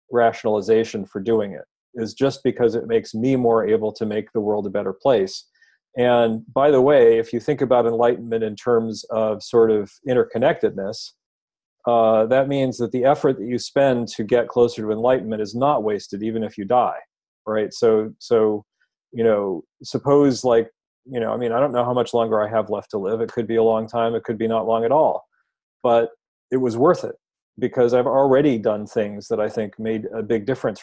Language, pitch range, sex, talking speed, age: English, 105-125 Hz, male, 210 wpm, 40-59